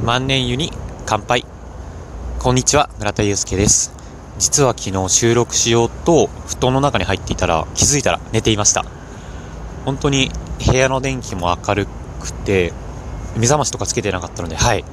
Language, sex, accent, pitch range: Japanese, male, native, 90-125 Hz